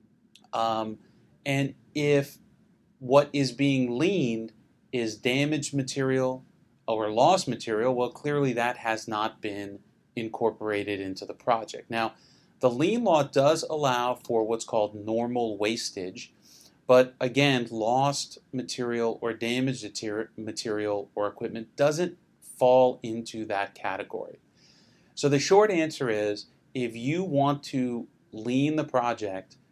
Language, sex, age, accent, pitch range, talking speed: English, male, 30-49, American, 110-130 Hz, 120 wpm